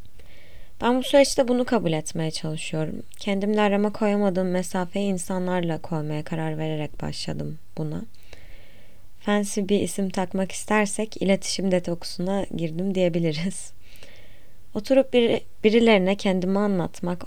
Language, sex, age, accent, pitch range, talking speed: Turkish, female, 20-39, native, 155-200 Hz, 110 wpm